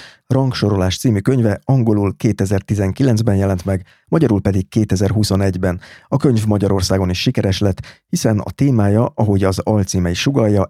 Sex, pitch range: male, 95-110 Hz